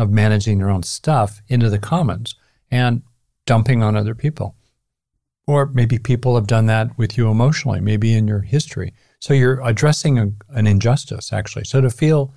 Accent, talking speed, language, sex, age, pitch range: American, 170 wpm, English, male, 50-69, 100-125 Hz